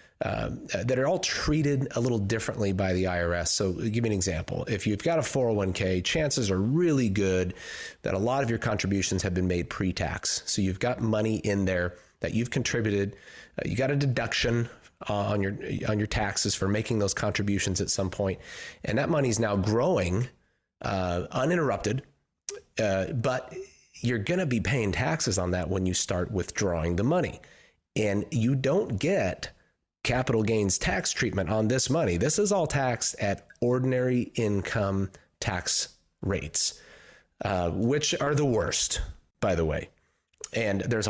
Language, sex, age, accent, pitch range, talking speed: English, male, 30-49, American, 95-120 Hz, 170 wpm